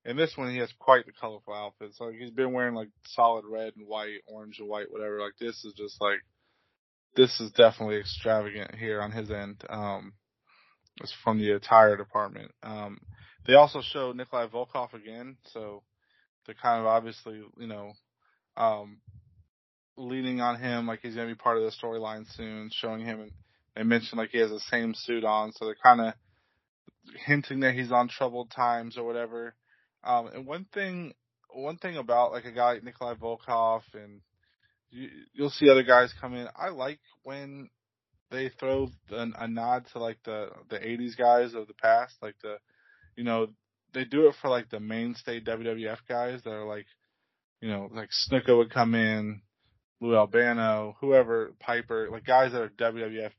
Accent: American